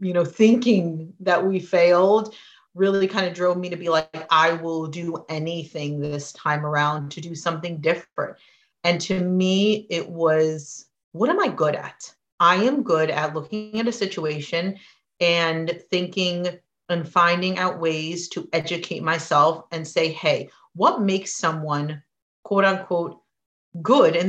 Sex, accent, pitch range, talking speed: female, American, 160-190 Hz, 155 wpm